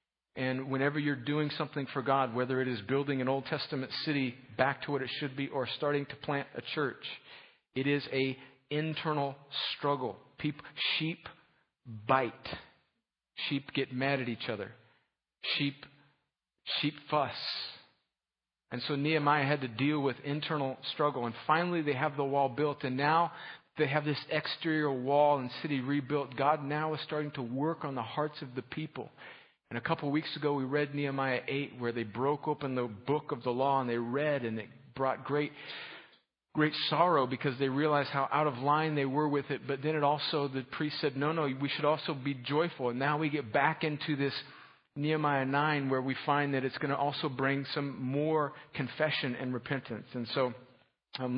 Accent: American